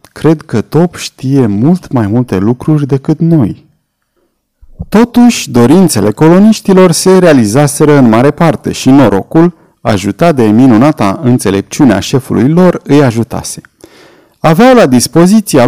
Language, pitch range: Romanian, 115-165 Hz